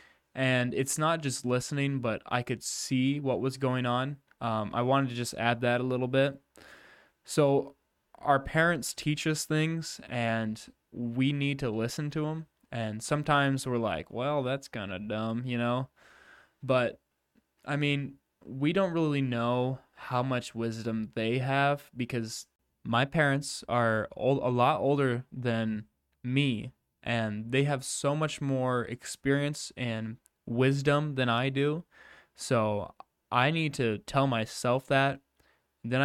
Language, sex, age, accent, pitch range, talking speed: English, male, 10-29, American, 115-140 Hz, 150 wpm